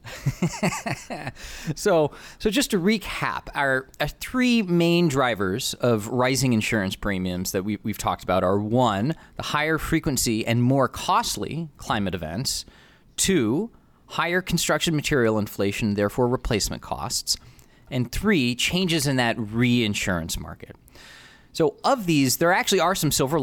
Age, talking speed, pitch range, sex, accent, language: 20-39, 130 wpm, 105-150 Hz, male, American, English